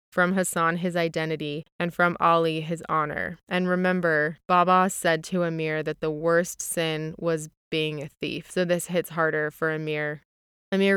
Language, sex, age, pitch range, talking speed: English, female, 20-39, 160-180 Hz, 165 wpm